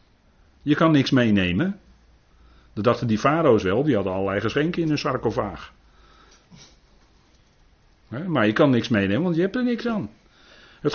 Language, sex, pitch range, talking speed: Dutch, male, 110-165 Hz, 155 wpm